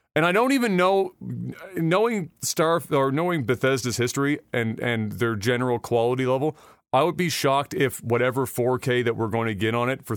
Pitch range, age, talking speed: 120-155 Hz, 30-49, 190 wpm